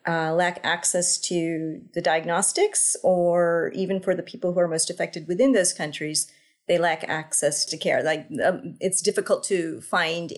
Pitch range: 160-195 Hz